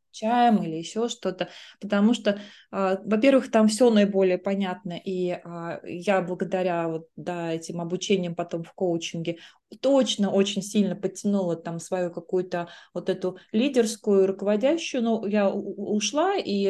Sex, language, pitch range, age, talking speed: female, Russian, 180-220 Hz, 20-39, 135 wpm